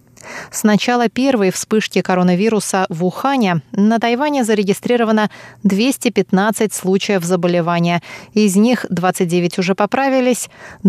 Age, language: 20-39, Russian